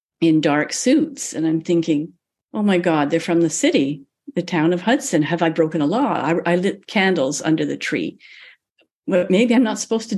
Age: 50-69